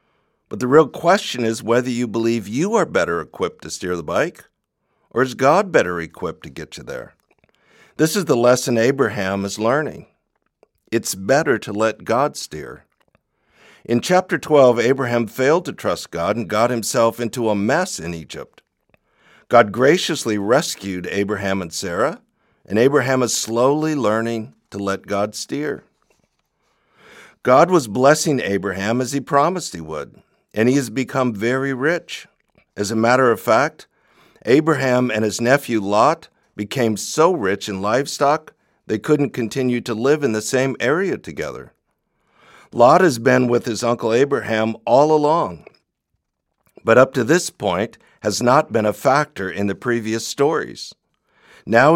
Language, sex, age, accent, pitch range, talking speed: English, male, 50-69, American, 110-135 Hz, 155 wpm